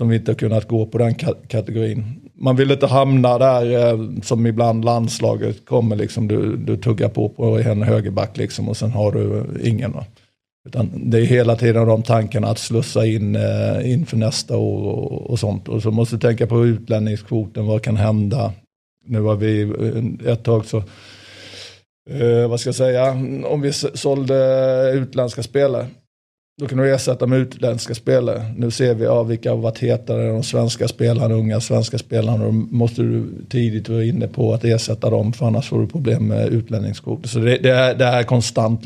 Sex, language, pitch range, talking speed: male, Swedish, 110-125 Hz, 190 wpm